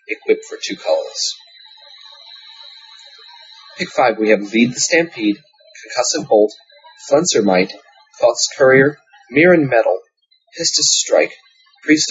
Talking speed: 105 wpm